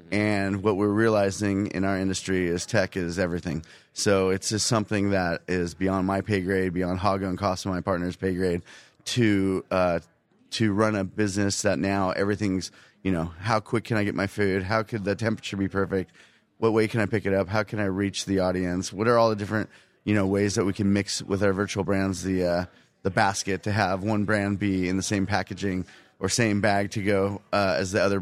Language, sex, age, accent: English, male, 30-49, American